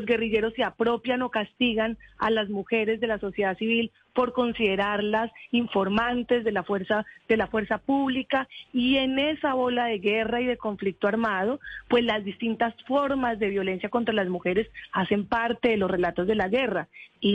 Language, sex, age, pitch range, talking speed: Spanish, female, 30-49, 205-250 Hz, 175 wpm